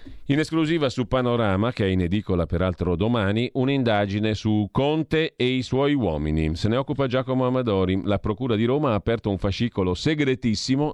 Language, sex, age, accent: Italian, male, 40-59, native